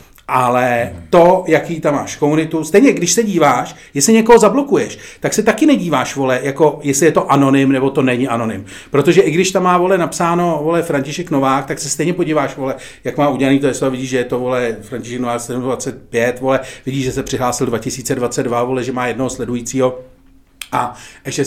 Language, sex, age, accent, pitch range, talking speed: Czech, male, 40-59, native, 130-170 Hz, 195 wpm